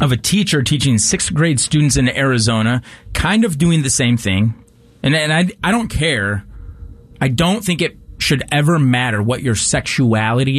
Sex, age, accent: male, 30-49, American